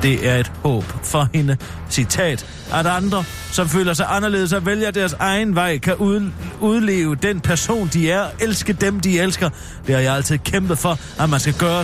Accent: native